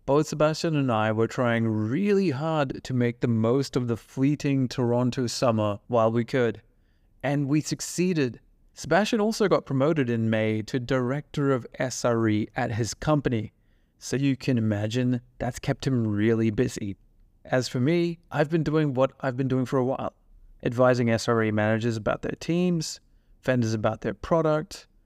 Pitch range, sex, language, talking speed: 115-145 Hz, male, English, 165 wpm